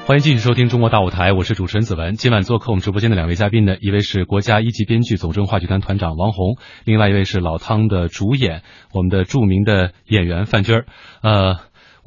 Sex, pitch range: male, 95-120 Hz